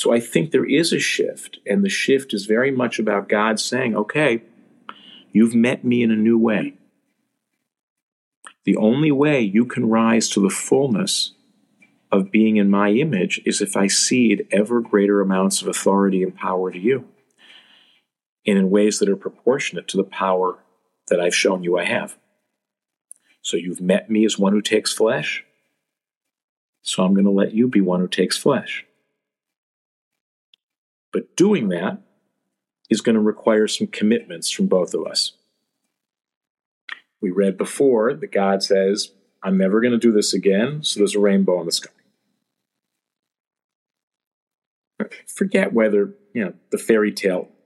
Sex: male